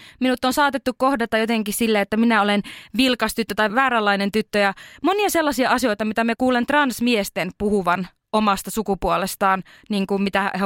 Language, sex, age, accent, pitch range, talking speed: Finnish, female, 20-39, native, 200-245 Hz, 150 wpm